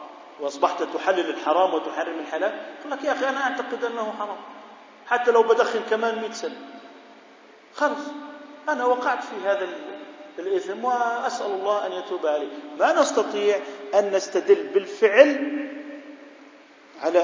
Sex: male